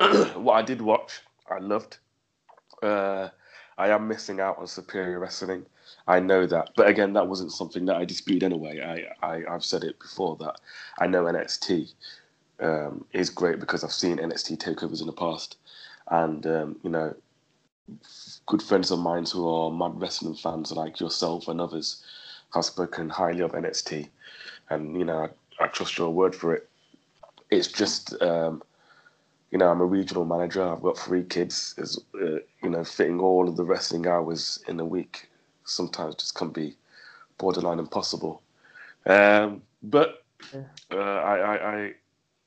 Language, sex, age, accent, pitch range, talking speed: English, male, 30-49, British, 85-105 Hz, 160 wpm